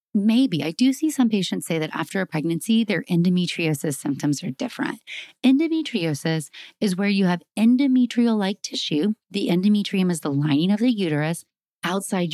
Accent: American